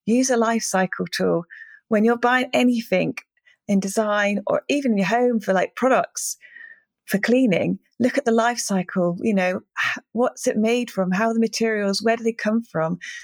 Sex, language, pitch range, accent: female, English, 190-240 Hz, British